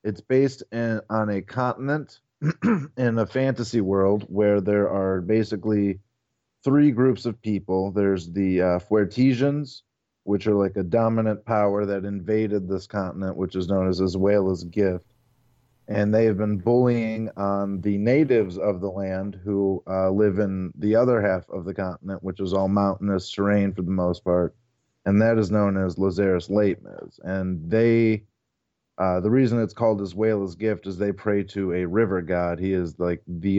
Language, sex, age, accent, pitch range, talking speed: English, male, 30-49, American, 95-110 Hz, 175 wpm